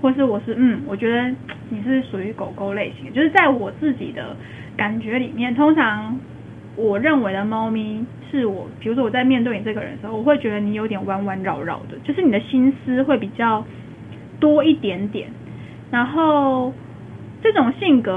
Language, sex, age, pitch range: Chinese, female, 10-29, 220-275 Hz